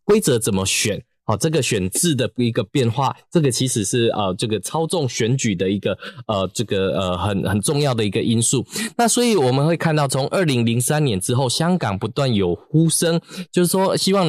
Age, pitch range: 20-39, 115-150 Hz